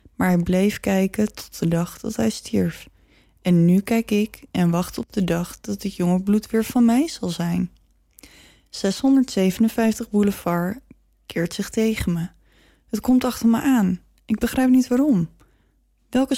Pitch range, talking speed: 175-230 Hz, 160 wpm